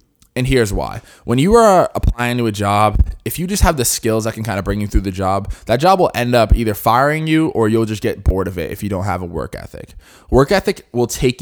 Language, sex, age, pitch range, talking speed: English, male, 20-39, 95-120 Hz, 270 wpm